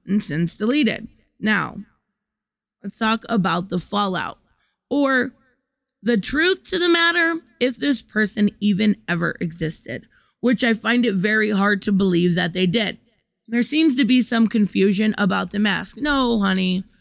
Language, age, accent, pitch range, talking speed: English, 20-39, American, 185-235 Hz, 150 wpm